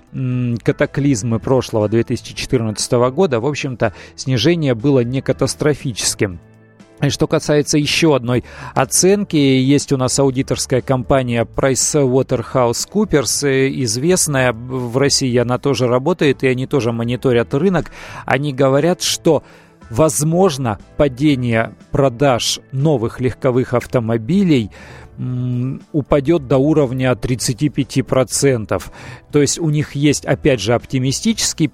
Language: Russian